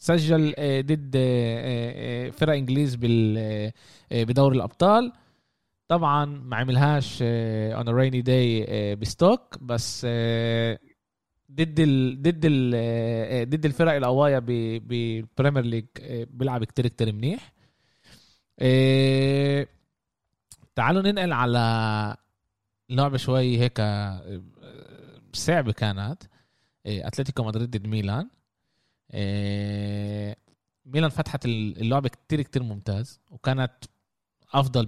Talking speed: 80 wpm